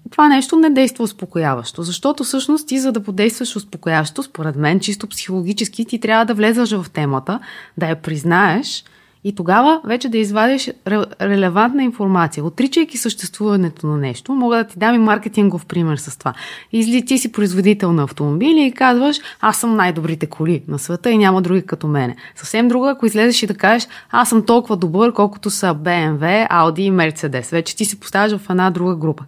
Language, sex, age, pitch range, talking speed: Bulgarian, female, 20-39, 170-225 Hz, 180 wpm